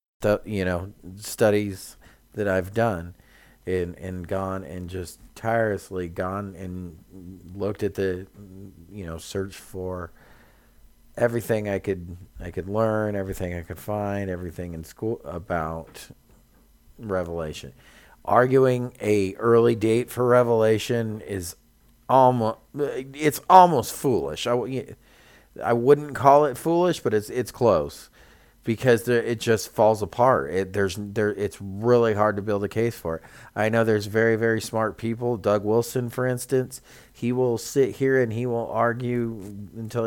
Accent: American